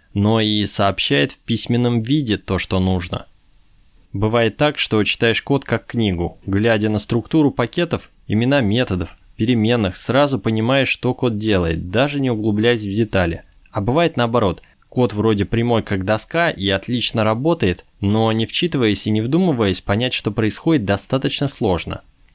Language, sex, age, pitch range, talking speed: Russian, male, 20-39, 100-125 Hz, 150 wpm